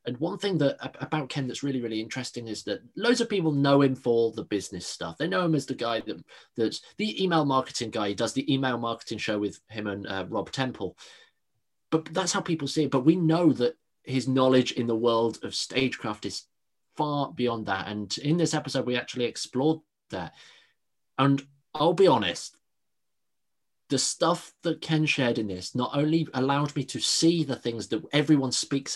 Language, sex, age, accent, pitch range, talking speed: English, male, 20-39, British, 115-155 Hz, 200 wpm